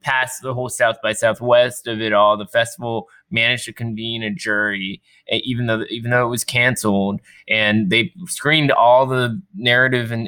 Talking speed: 170 wpm